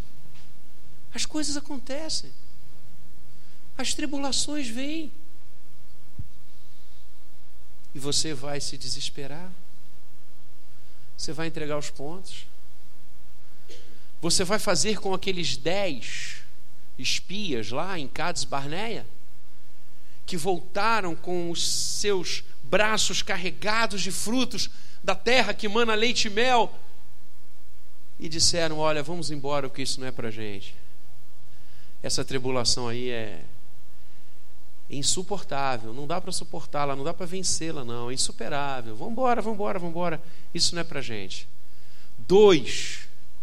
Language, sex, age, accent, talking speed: Portuguese, male, 50-69, Brazilian, 110 wpm